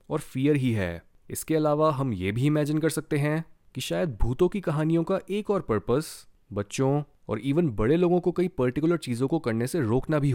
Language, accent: Hindi, native